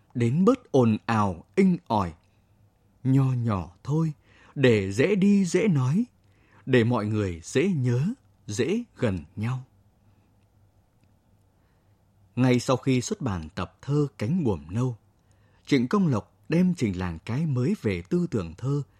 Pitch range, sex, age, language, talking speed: 100-140 Hz, male, 20-39, Vietnamese, 140 wpm